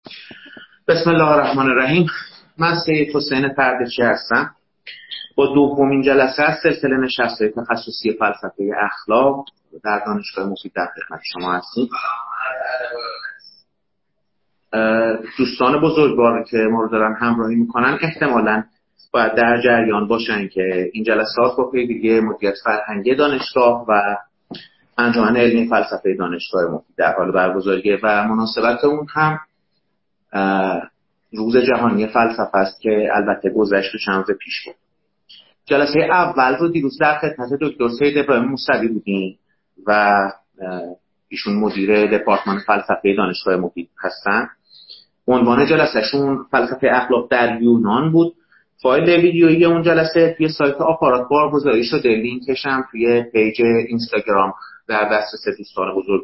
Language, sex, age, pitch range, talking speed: Persian, male, 30-49, 105-140 Hz, 125 wpm